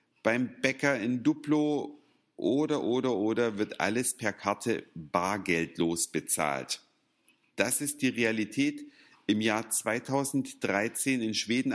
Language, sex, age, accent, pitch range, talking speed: German, male, 50-69, German, 110-145 Hz, 110 wpm